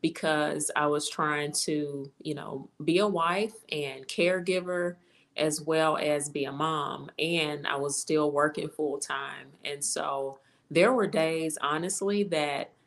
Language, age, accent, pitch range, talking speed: English, 30-49, American, 145-175 Hz, 145 wpm